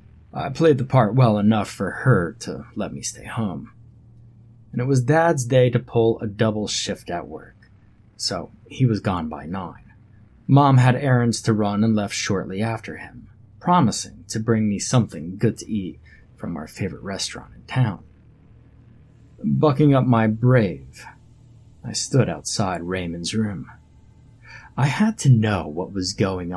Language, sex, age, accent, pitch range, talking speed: English, male, 30-49, American, 90-120 Hz, 160 wpm